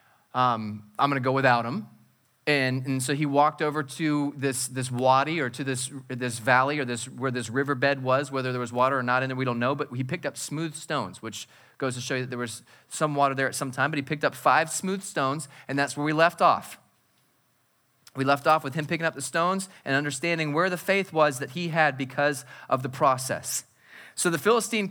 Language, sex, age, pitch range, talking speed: English, male, 30-49, 125-160 Hz, 230 wpm